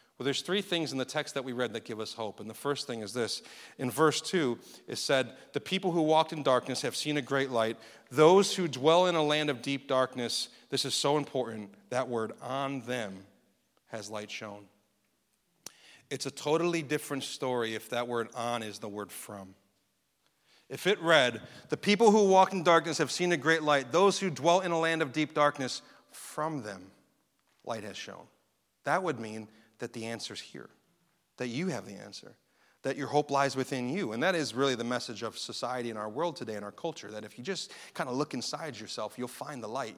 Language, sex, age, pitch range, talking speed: English, male, 40-59, 115-160 Hz, 215 wpm